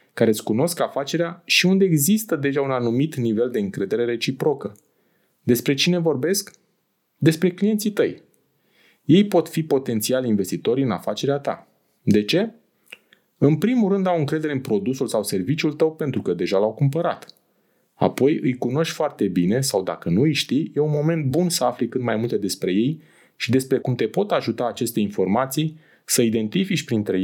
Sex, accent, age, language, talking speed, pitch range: male, native, 20-39, Romanian, 170 wpm, 120-165 Hz